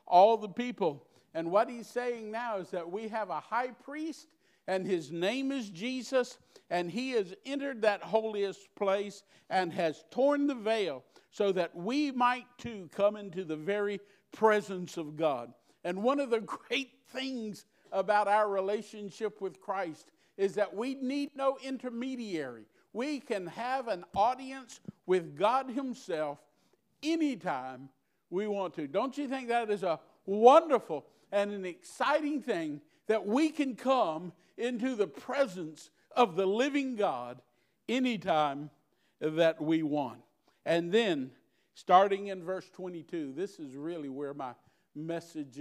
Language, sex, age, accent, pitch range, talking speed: English, male, 50-69, American, 160-245 Hz, 145 wpm